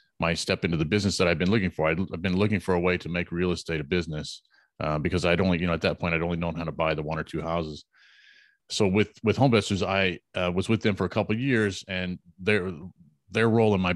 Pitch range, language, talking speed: 85-105 Hz, English, 265 wpm